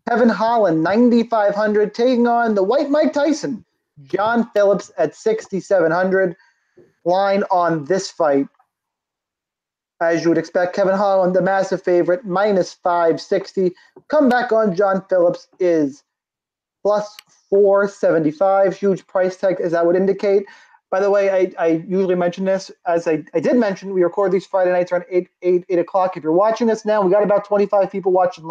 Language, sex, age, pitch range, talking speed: English, male, 30-49, 175-205 Hz, 160 wpm